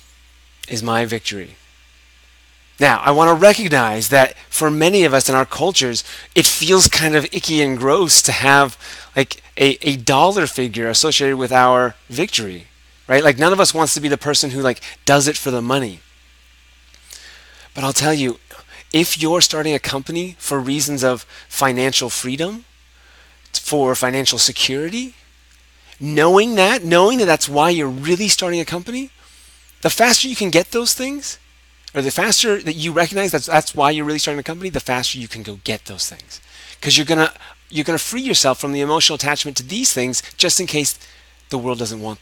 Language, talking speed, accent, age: English, 185 wpm, American, 30-49